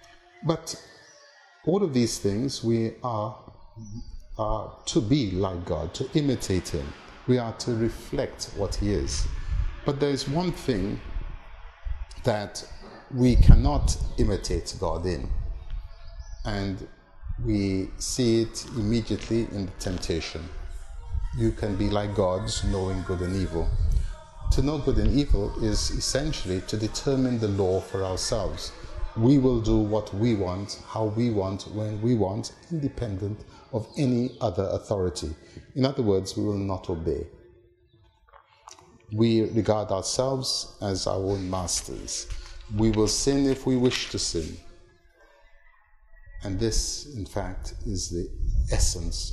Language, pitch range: English, 90-115 Hz